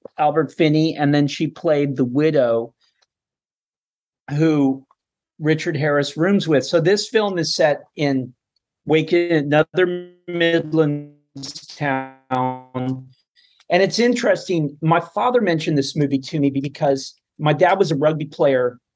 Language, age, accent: English, 40-59, American